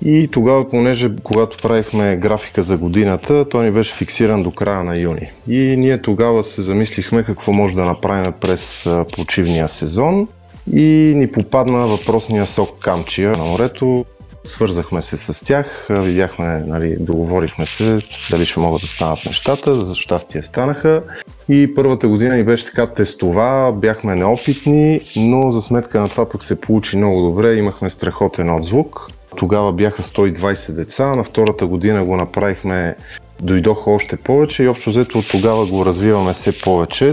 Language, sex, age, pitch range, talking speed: Bulgarian, male, 30-49, 90-115 Hz, 155 wpm